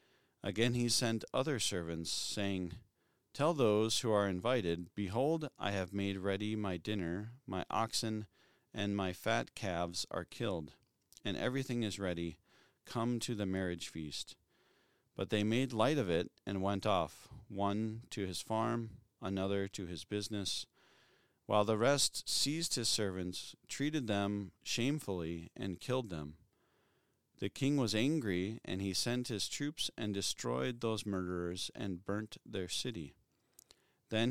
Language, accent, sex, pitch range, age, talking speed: English, American, male, 95-115 Hz, 40-59, 145 wpm